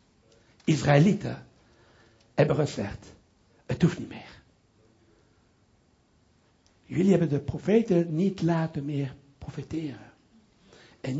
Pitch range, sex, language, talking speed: 135-200 Hz, male, Dutch, 85 wpm